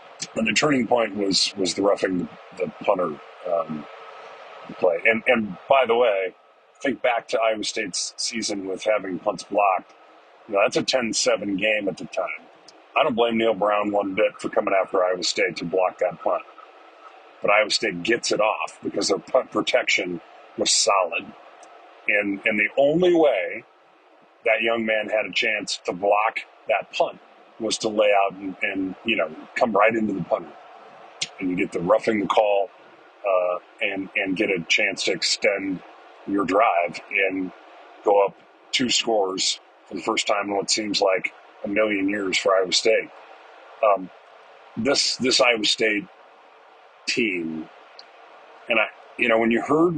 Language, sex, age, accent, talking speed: English, male, 40-59, American, 170 wpm